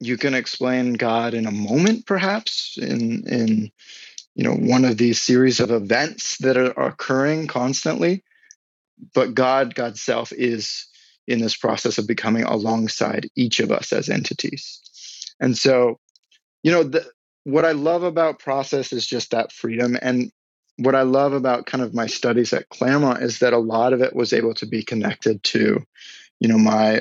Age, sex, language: 20-39, male, English